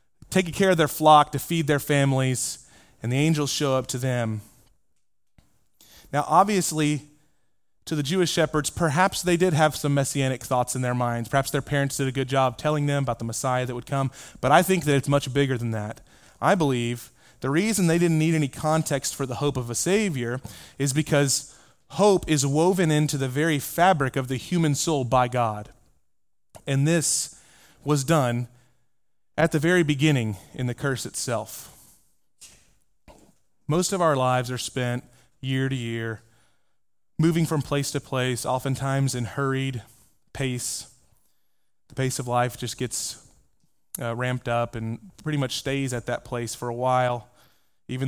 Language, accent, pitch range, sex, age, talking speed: English, American, 125-150 Hz, male, 30-49, 170 wpm